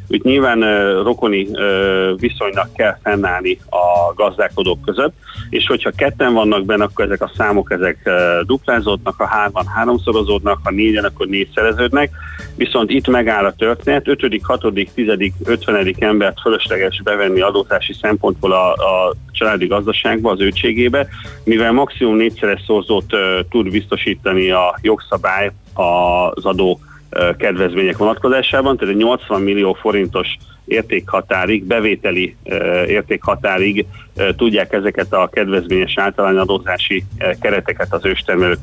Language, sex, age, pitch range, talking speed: Hungarian, male, 40-59, 95-115 Hz, 125 wpm